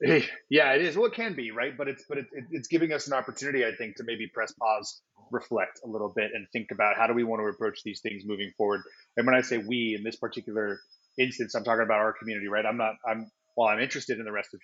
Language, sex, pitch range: English, male, 105-120 Hz